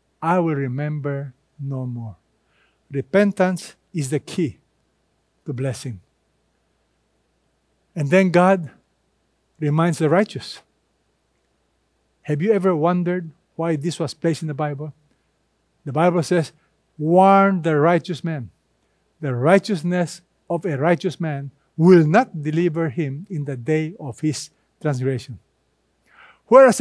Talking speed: 115 wpm